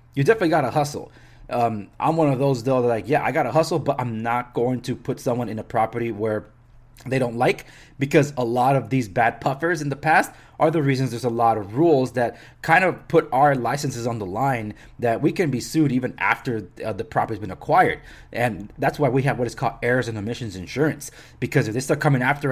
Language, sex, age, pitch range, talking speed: English, male, 20-39, 115-140 Hz, 235 wpm